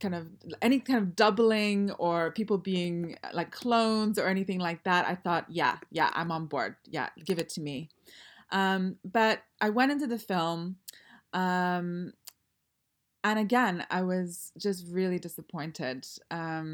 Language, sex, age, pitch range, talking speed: English, female, 20-39, 175-220 Hz, 150 wpm